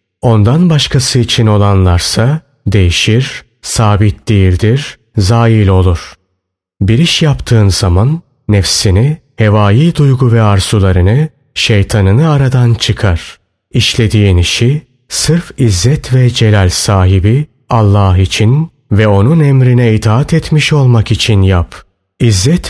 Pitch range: 100-135 Hz